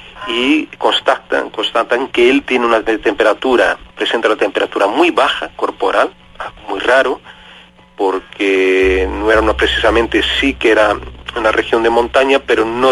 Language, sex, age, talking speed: English, male, 40-59, 140 wpm